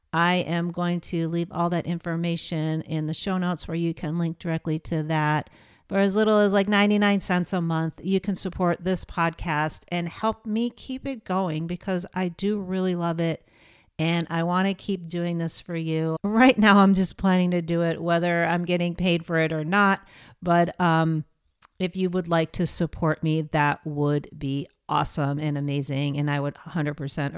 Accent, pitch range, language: American, 165-195 Hz, English